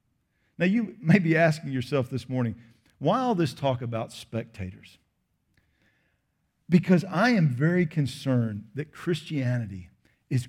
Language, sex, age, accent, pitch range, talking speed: English, male, 50-69, American, 125-190 Hz, 125 wpm